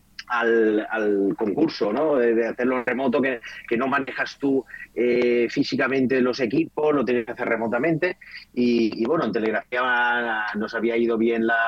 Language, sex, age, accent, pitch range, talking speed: Spanish, male, 30-49, Spanish, 115-145 Hz, 175 wpm